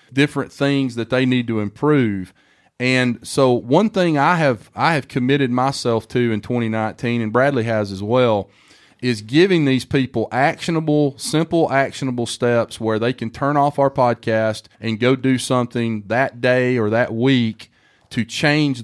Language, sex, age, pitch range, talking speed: English, male, 30-49, 115-145 Hz, 160 wpm